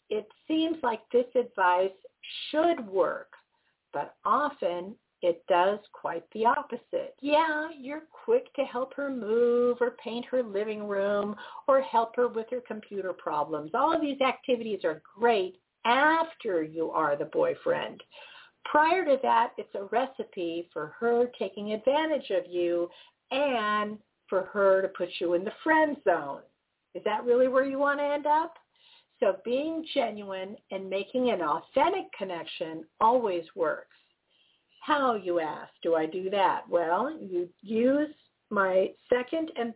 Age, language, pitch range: 50-69, English, 195-290 Hz